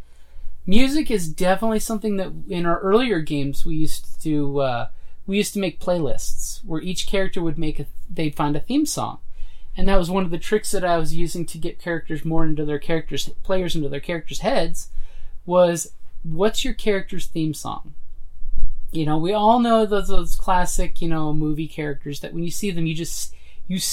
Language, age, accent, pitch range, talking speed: English, 30-49, American, 140-180 Hz, 195 wpm